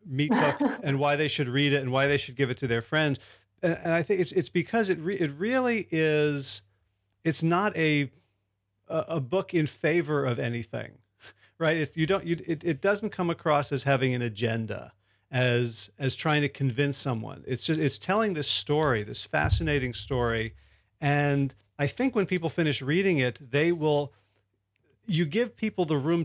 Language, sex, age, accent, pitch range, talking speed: English, male, 40-59, American, 120-160 Hz, 185 wpm